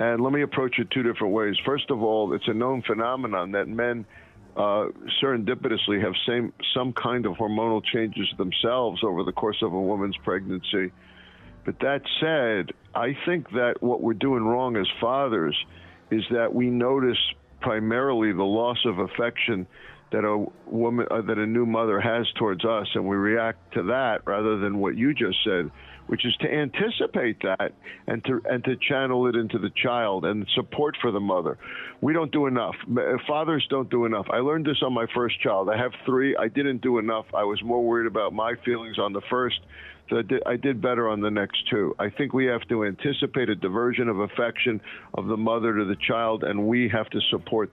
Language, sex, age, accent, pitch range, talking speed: English, male, 50-69, American, 105-125 Hz, 195 wpm